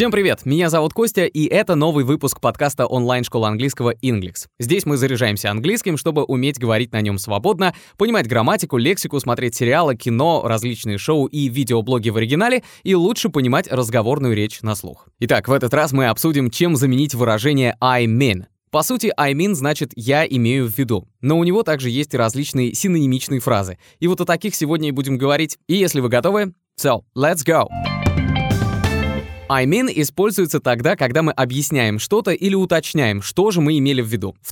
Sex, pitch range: male, 120-165 Hz